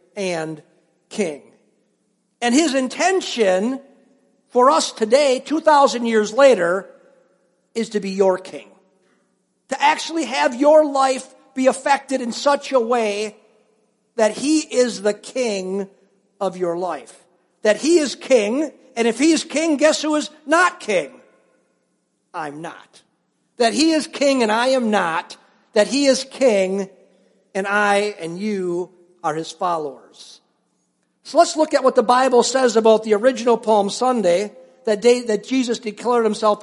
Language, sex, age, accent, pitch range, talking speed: English, male, 50-69, American, 210-265 Hz, 145 wpm